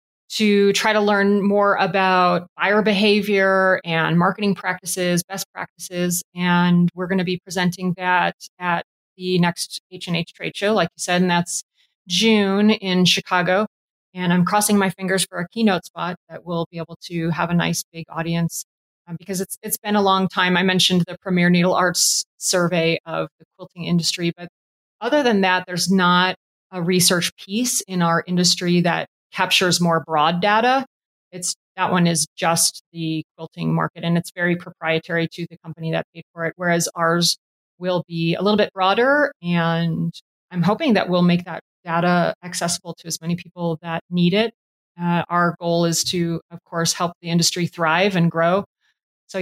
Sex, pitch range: female, 170-195 Hz